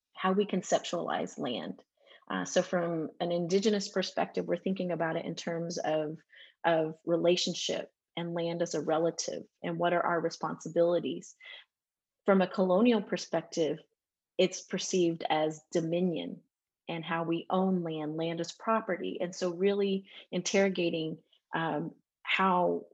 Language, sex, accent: English, female, American